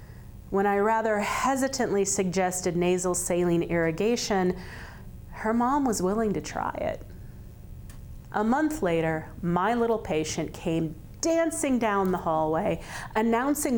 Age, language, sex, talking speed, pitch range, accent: 40-59, English, female, 120 wpm, 175-250 Hz, American